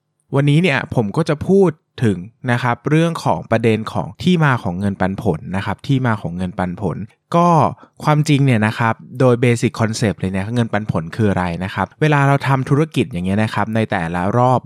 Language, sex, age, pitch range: Thai, male, 20-39, 100-135 Hz